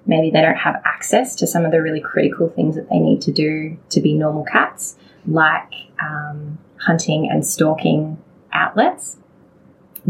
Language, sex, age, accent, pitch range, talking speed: English, female, 20-39, Australian, 155-185 Hz, 165 wpm